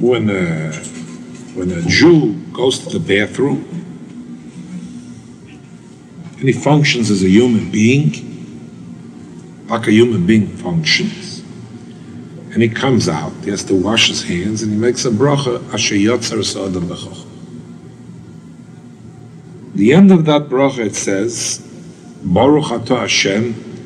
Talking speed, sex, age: 125 wpm, male, 50-69